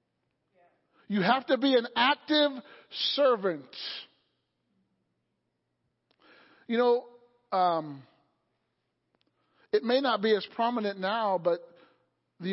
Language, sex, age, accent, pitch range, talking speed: English, male, 50-69, American, 200-250 Hz, 90 wpm